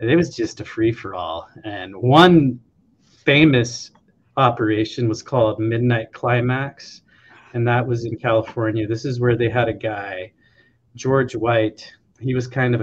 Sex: male